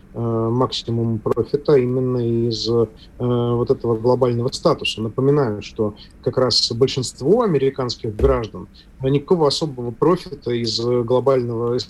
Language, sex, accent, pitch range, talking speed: Russian, male, native, 115-135 Hz, 105 wpm